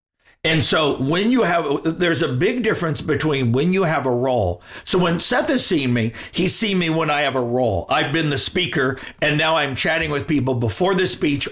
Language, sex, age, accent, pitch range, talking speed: English, male, 50-69, American, 135-170 Hz, 220 wpm